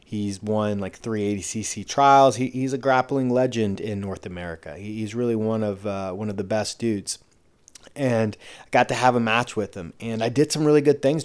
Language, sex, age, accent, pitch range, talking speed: English, male, 30-49, American, 105-125 Hz, 220 wpm